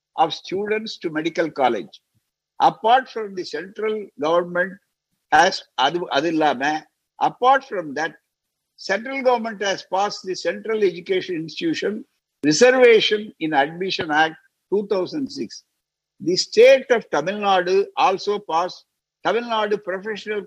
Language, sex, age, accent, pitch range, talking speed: Tamil, male, 60-79, native, 155-215 Hz, 115 wpm